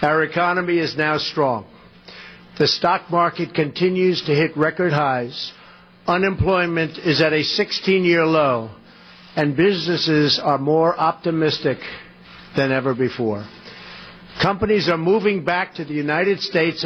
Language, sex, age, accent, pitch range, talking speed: English, male, 60-79, American, 145-175 Hz, 125 wpm